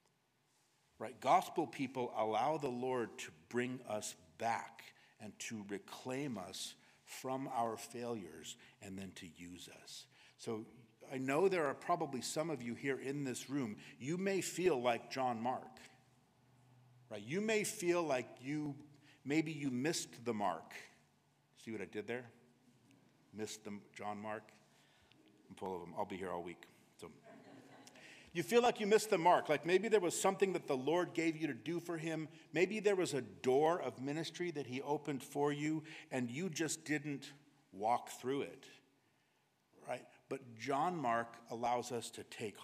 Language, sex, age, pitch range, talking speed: English, male, 50-69, 115-155 Hz, 165 wpm